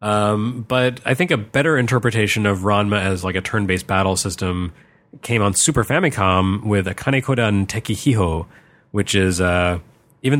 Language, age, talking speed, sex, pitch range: English, 30-49, 155 wpm, male, 95-120 Hz